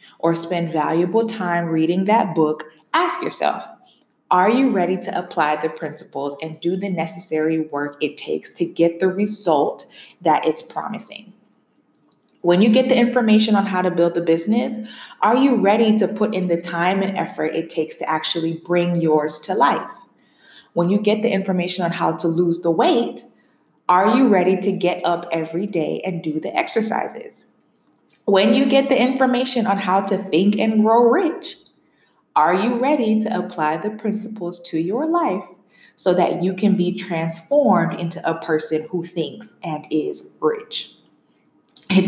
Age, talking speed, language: 20-39, 170 wpm, English